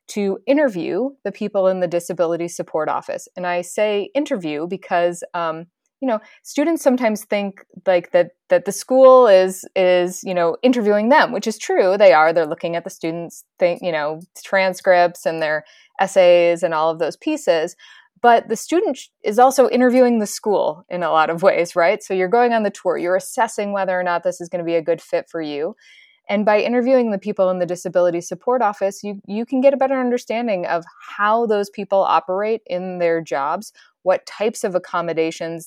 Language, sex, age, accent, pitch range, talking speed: English, female, 20-39, American, 175-230 Hz, 195 wpm